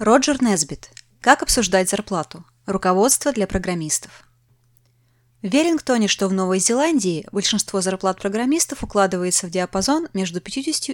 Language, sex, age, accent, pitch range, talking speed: Russian, female, 20-39, native, 175-260 Hz, 120 wpm